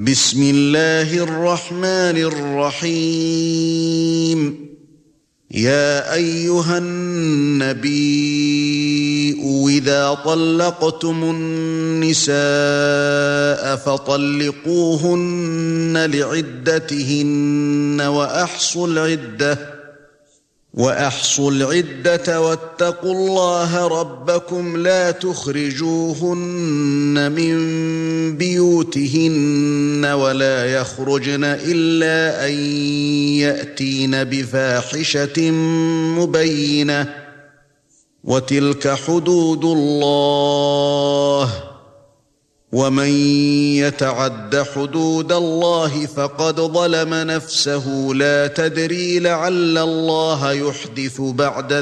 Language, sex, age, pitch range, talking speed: Arabic, male, 50-69, 145-165 Hz, 55 wpm